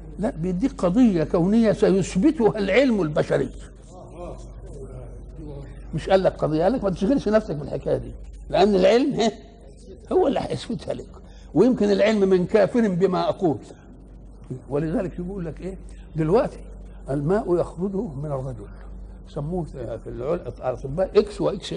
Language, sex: Arabic, male